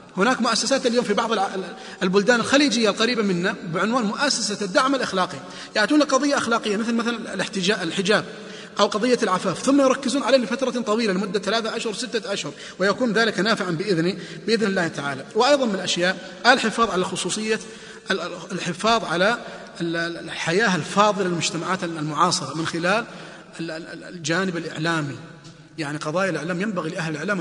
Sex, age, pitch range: male, 30-49, 180-230 Hz